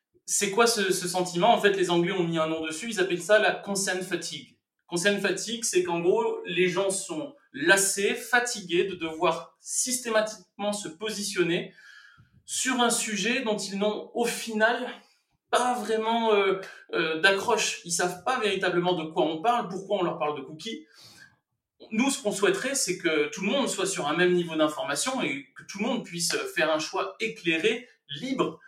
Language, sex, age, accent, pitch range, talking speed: French, male, 30-49, French, 170-230 Hz, 185 wpm